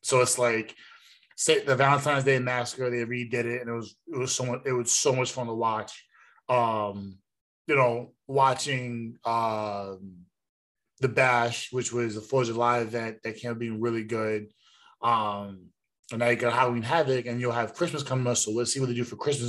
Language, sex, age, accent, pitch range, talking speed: English, male, 20-39, American, 115-145 Hz, 205 wpm